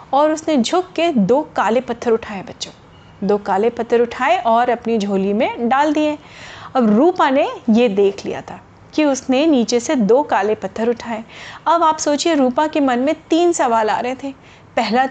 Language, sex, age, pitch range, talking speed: Hindi, female, 30-49, 220-280 Hz, 185 wpm